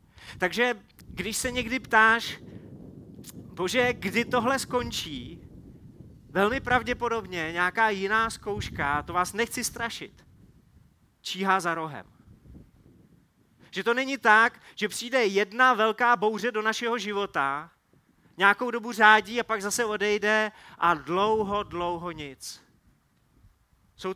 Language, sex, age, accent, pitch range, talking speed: Czech, male, 30-49, native, 175-230 Hz, 110 wpm